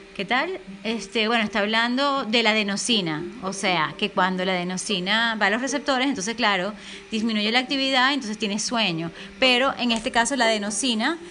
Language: English